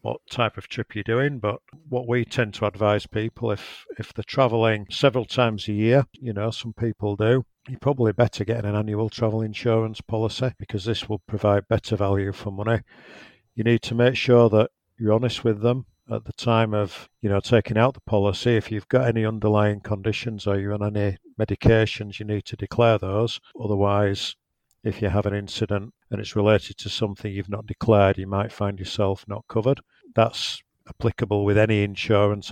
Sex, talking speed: male, 190 wpm